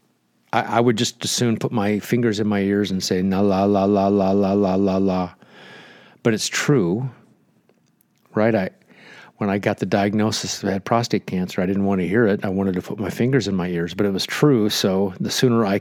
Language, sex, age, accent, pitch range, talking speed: English, male, 50-69, American, 90-105 Hz, 225 wpm